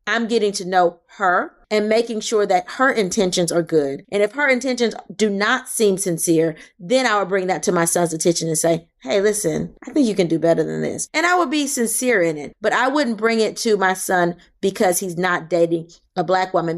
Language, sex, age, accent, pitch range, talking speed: English, female, 30-49, American, 185-255 Hz, 230 wpm